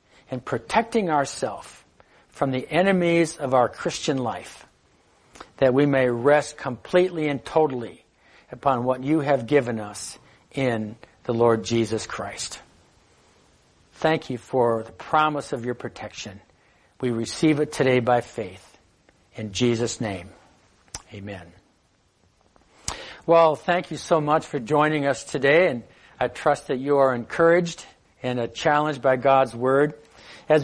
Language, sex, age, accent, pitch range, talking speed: English, male, 60-79, American, 125-155 Hz, 135 wpm